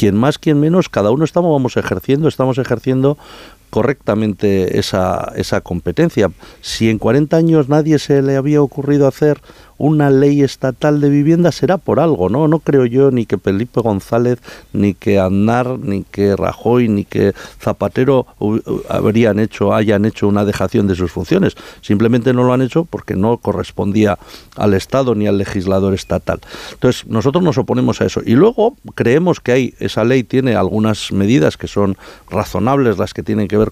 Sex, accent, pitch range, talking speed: male, Spanish, 105-135 Hz, 175 wpm